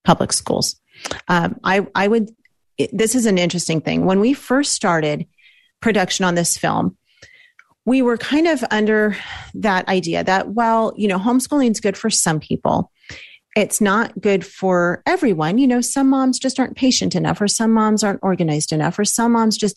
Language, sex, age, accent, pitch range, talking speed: English, female, 40-59, American, 175-230 Hz, 180 wpm